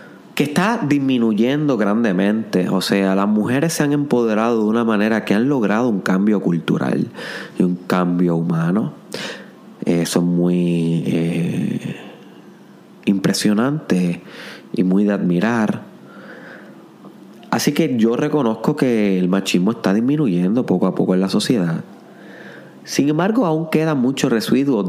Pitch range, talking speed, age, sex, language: 95-155 Hz, 130 wpm, 30-49, male, Spanish